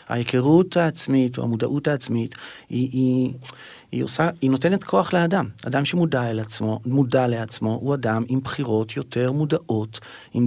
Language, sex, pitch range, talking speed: Hebrew, male, 130-170 Hz, 140 wpm